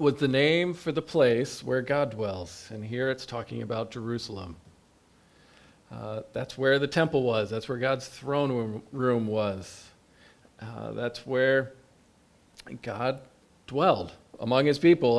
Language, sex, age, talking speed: English, male, 40-59, 140 wpm